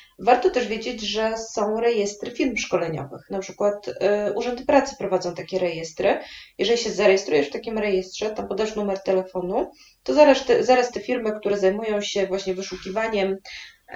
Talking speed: 150 wpm